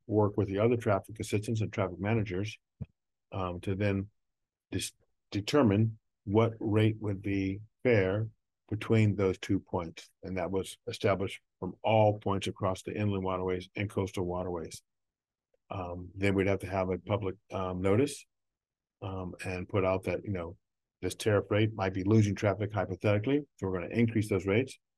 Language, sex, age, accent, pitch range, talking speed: English, male, 50-69, American, 95-115 Hz, 165 wpm